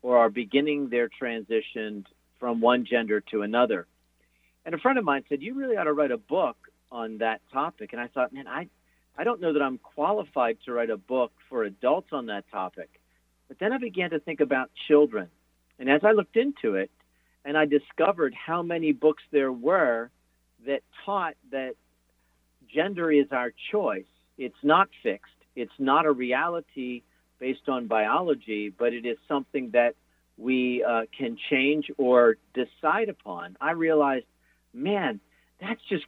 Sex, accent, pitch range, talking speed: male, American, 120-165 Hz, 170 wpm